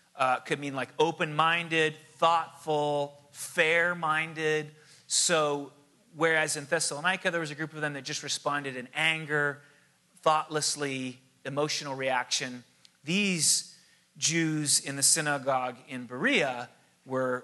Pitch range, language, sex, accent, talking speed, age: 135-170 Hz, English, male, American, 115 wpm, 30-49